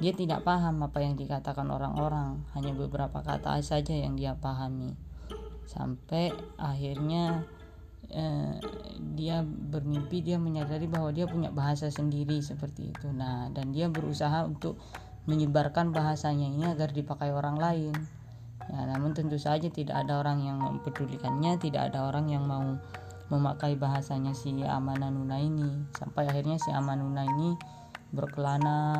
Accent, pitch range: native, 135-155 Hz